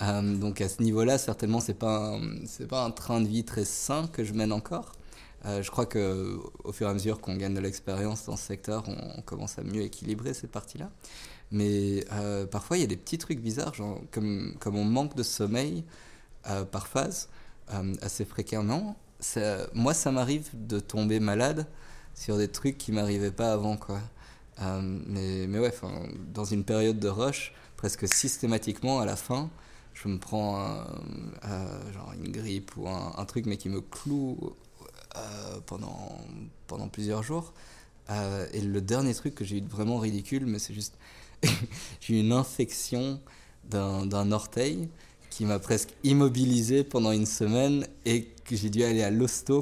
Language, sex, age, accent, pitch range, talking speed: French, male, 20-39, French, 100-125 Hz, 185 wpm